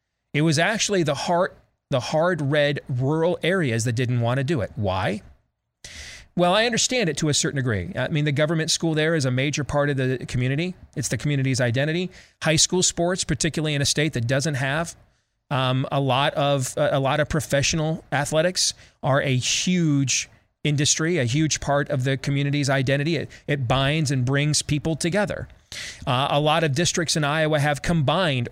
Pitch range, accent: 130-160 Hz, American